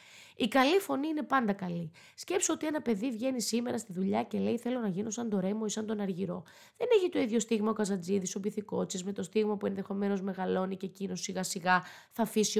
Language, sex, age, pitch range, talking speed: Greek, female, 20-39, 195-270 Hz, 230 wpm